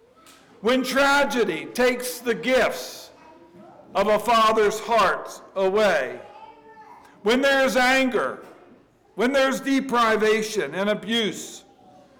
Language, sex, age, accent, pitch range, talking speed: English, male, 60-79, American, 185-285 Hz, 90 wpm